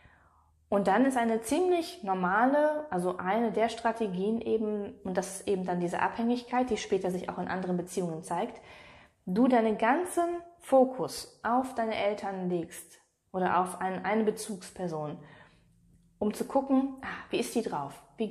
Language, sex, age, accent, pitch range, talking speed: German, female, 20-39, German, 185-230 Hz, 150 wpm